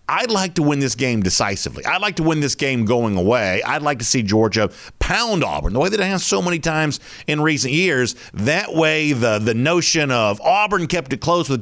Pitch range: 115-155 Hz